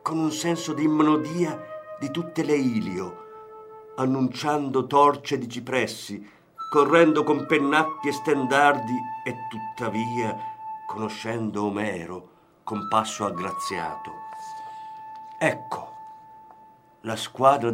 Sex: male